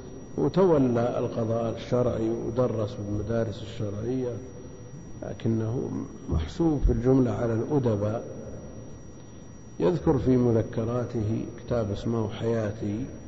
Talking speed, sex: 80 wpm, male